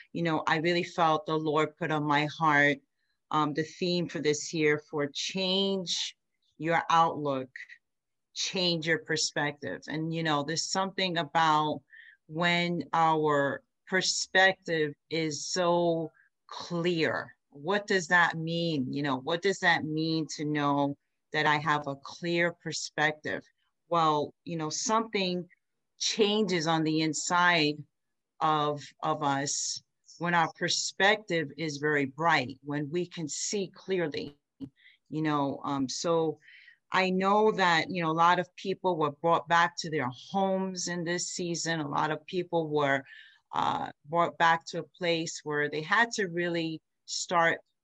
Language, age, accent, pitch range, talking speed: English, 40-59, American, 150-175 Hz, 145 wpm